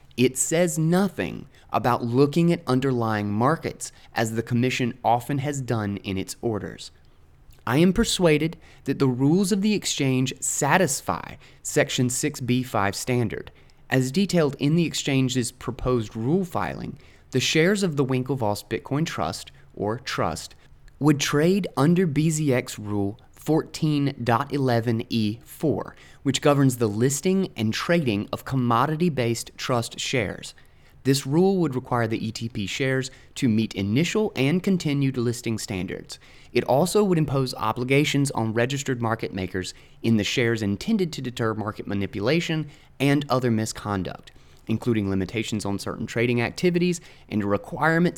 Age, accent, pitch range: 20-39, American, 110-150 Hz